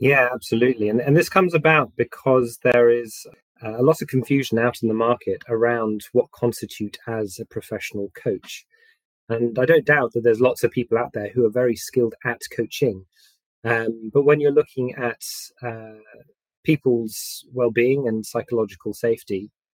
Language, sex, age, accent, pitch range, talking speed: English, male, 30-49, British, 110-130 Hz, 165 wpm